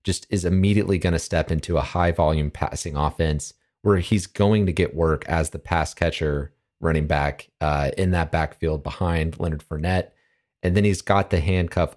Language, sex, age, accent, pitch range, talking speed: English, male, 30-49, American, 80-100 Hz, 180 wpm